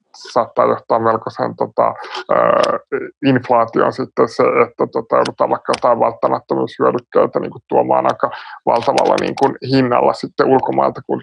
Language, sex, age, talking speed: Finnish, male, 20-39, 135 wpm